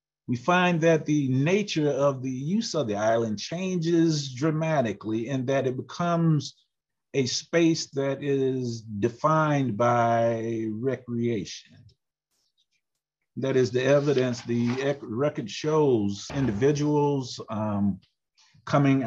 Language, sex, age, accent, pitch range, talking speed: English, male, 50-69, American, 110-150 Hz, 105 wpm